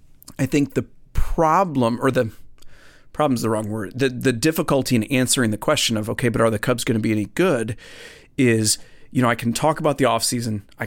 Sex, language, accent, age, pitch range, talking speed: male, English, American, 30-49, 110-140 Hz, 210 wpm